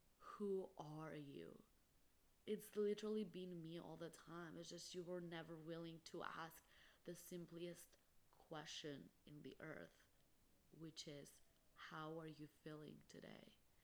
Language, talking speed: English, 135 wpm